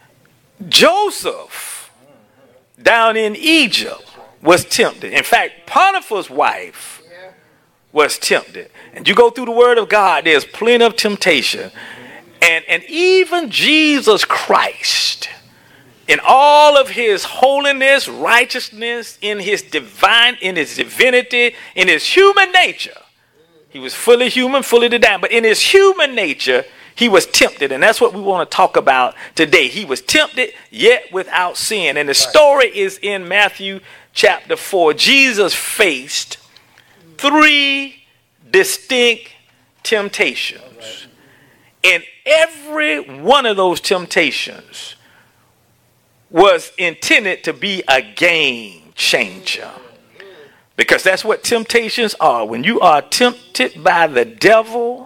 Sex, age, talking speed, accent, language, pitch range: male, 40-59, 120 wpm, American, English, 210-325 Hz